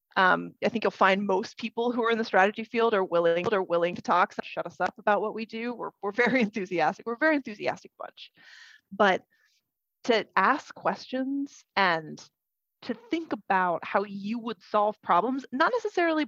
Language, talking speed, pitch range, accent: English, 190 wpm, 190-235 Hz, American